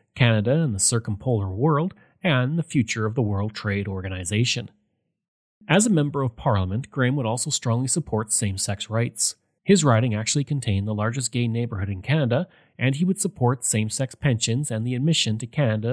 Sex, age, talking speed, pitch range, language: male, 30-49, 175 wpm, 110-150 Hz, English